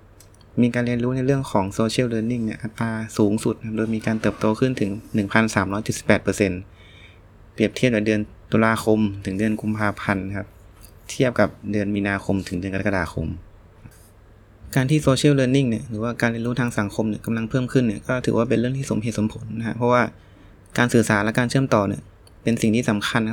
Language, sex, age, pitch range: Thai, male, 20-39, 100-120 Hz